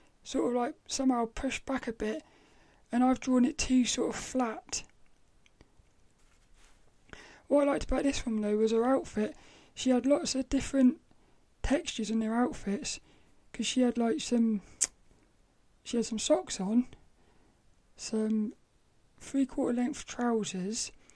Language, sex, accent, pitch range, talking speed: English, male, British, 220-270 Hz, 140 wpm